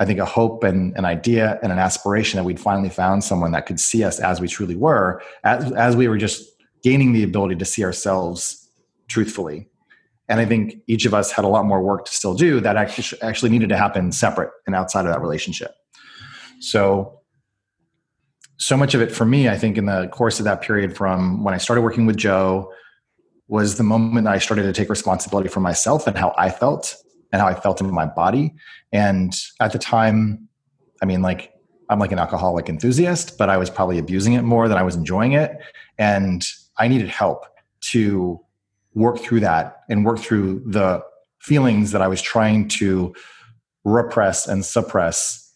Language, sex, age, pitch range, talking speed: English, male, 30-49, 95-115 Hz, 200 wpm